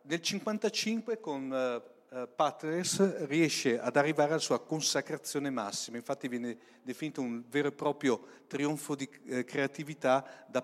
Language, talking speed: Italian, 125 wpm